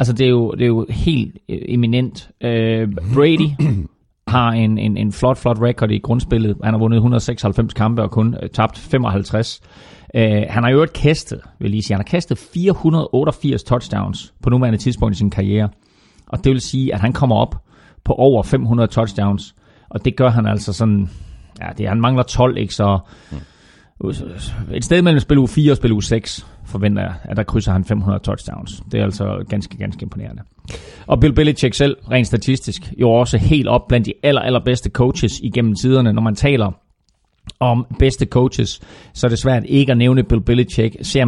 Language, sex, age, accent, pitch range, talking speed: Danish, male, 30-49, native, 105-125 Hz, 190 wpm